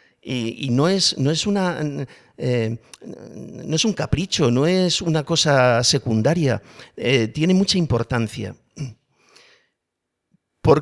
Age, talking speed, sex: 50-69, 95 wpm, male